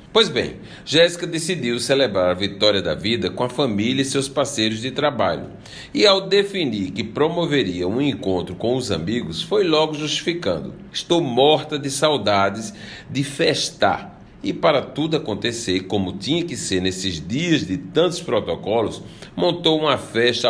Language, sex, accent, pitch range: Portuguese, male, Brazilian, 110-150 Hz